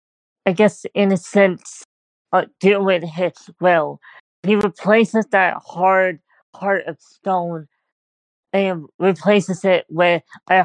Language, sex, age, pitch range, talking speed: English, female, 20-39, 170-195 Hz, 115 wpm